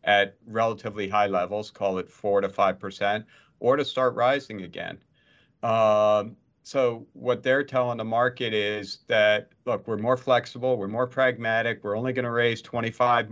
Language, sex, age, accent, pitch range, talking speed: English, male, 50-69, American, 100-120 Hz, 160 wpm